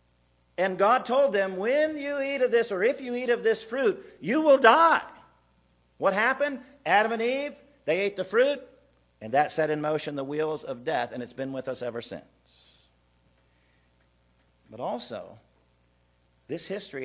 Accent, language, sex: American, English, male